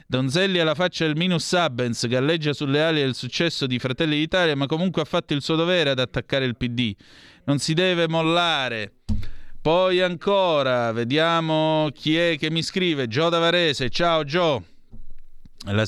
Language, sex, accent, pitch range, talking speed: Italian, male, native, 115-150 Hz, 165 wpm